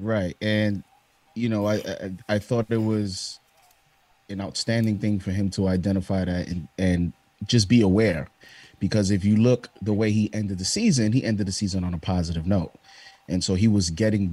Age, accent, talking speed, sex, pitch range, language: 30-49, American, 195 wpm, male, 100-115 Hz, English